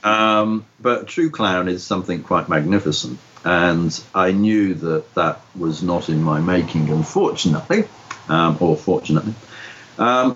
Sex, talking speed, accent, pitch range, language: male, 135 wpm, British, 80-115 Hz, English